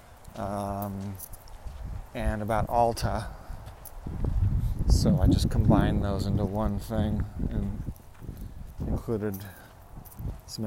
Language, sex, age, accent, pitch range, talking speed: English, male, 30-49, American, 95-115 Hz, 85 wpm